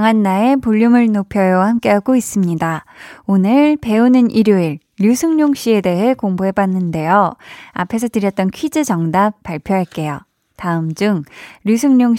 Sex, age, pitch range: female, 20-39, 185-255 Hz